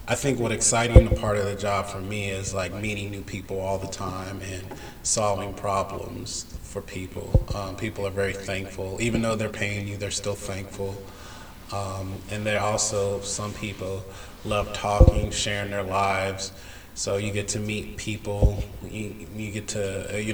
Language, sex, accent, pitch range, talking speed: English, male, American, 95-110 Hz, 175 wpm